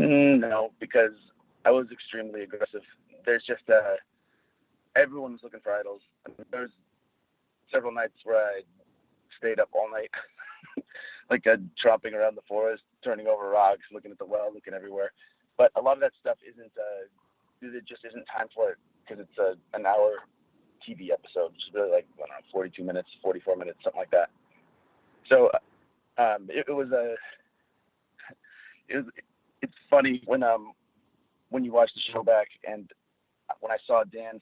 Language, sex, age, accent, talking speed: English, male, 30-49, American, 180 wpm